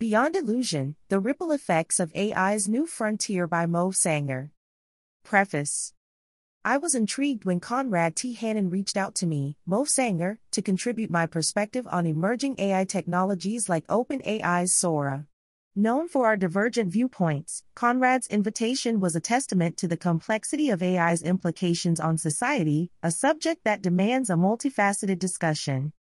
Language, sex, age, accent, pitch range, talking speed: English, female, 30-49, American, 170-225 Hz, 140 wpm